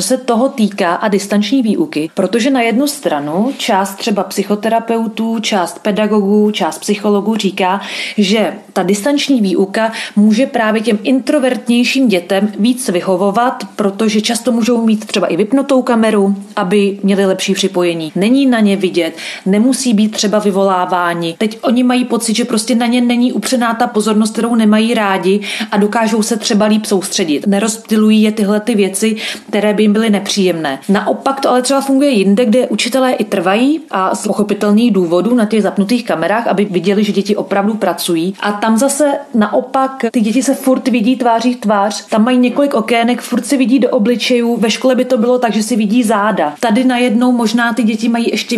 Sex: female